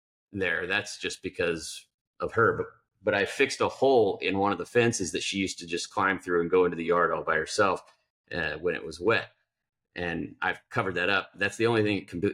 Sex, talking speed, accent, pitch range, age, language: male, 235 wpm, American, 100-145 Hz, 40-59, English